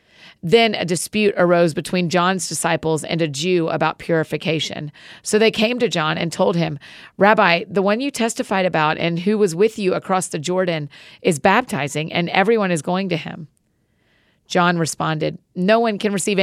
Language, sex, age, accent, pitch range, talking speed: English, female, 40-59, American, 160-200 Hz, 175 wpm